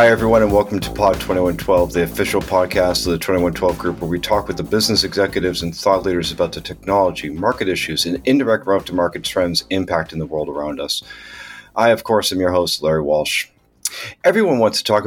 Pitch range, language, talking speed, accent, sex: 85-110 Hz, English, 195 wpm, American, male